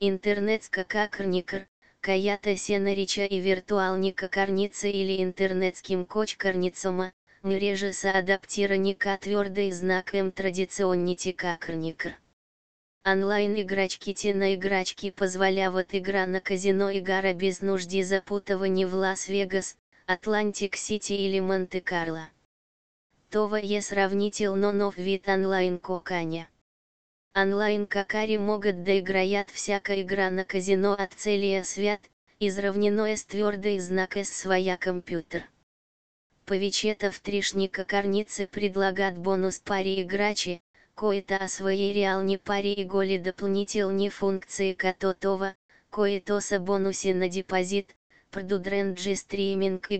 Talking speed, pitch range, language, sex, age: 95 wpm, 185-200 Hz, Bulgarian, female, 20-39